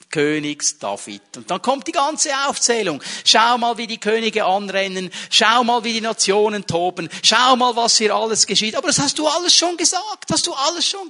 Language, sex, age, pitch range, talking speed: German, male, 50-69, 170-245 Hz, 200 wpm